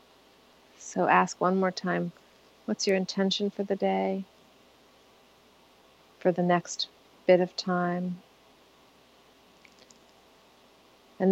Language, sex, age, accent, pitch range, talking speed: English, female, 40-59, American, 180-195 Hz, 95 wpm